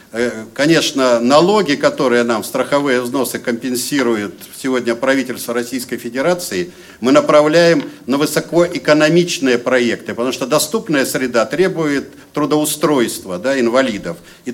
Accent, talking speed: native, 105 wpm